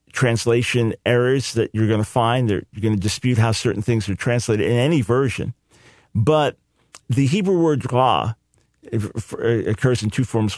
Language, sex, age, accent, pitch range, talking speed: English, male, 50-69, American, 110-135 Hz, 160 wpm